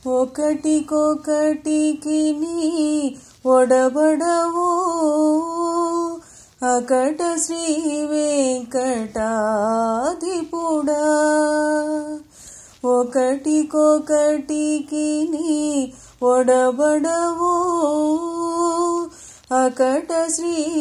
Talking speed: 30 wpm